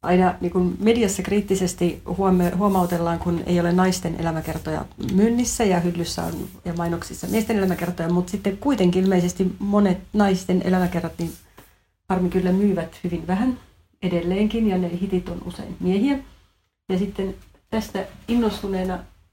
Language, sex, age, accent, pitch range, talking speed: Finnish, female, 40-59, native, 175-200 Hz, 130 wpm